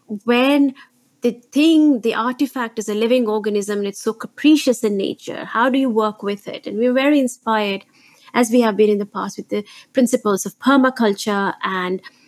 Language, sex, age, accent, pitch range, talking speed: English, female, 30-49, Indian, 205-250 Hz, 185 wpm